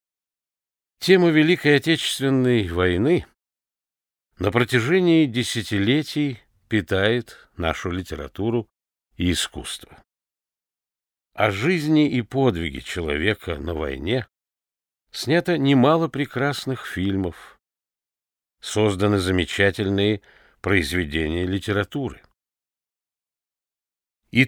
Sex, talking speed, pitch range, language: male, 70 wpm, 85-125 Hz, Russian